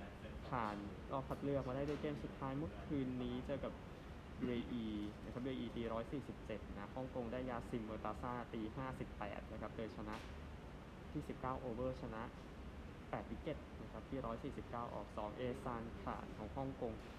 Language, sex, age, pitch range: Thai, male, 20-39, 100-125 Hz